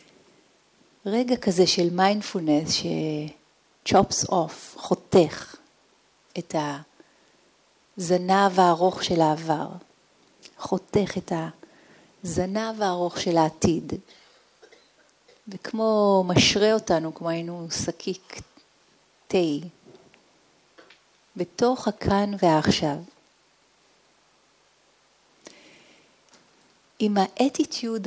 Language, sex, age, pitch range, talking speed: Hebrew, female, 40-59, 165-195 Hz, 65 wpm